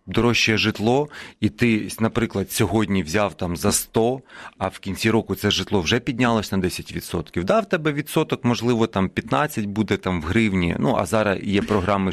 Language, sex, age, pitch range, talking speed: Ukrainian, male, 40-59, 95-130 Hz, 175 wpm